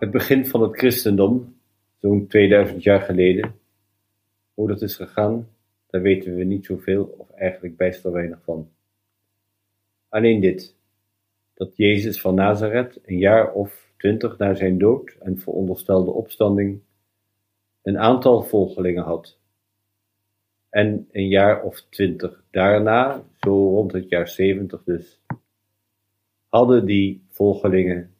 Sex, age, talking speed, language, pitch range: male, 50-69, 125 wpm, Dutch, 95-105 Hz